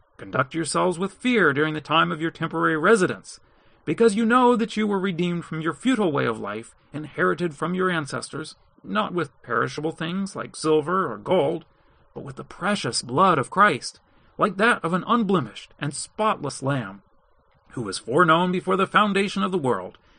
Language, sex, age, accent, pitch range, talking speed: English, male, 40-59, American, 125-190 Hz, 180 wpm